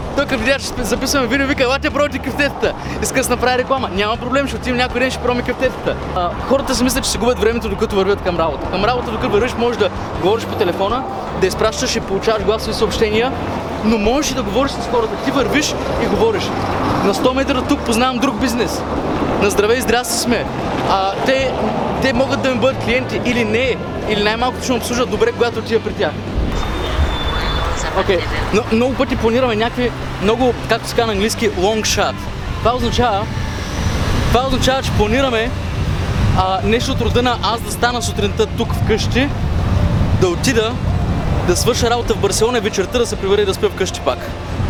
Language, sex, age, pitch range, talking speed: Bulgarian, male, 20-39, 180-255 Hz, 190 wpm